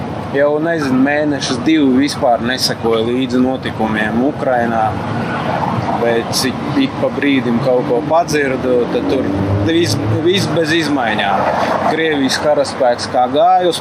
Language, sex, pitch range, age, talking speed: English, male, 110-140 Hz, 20-39, 115 wpm